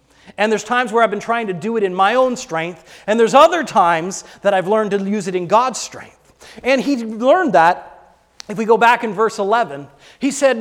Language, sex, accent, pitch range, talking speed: English, male, American, 185-245 Hz, 225 wpm